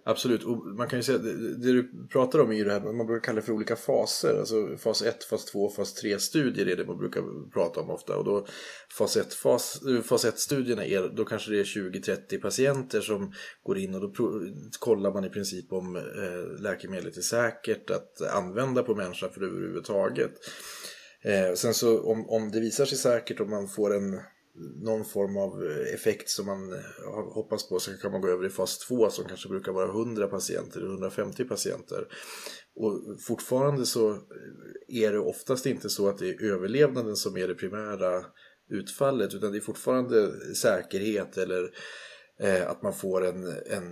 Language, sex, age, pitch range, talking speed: Swedish, male, 20-39, 100-125 Hz, 185 wpm